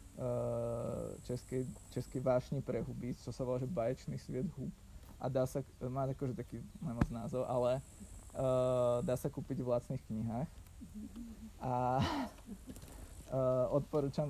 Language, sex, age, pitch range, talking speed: Czech, male, 20-39, 115-130 Hz, 125 wpm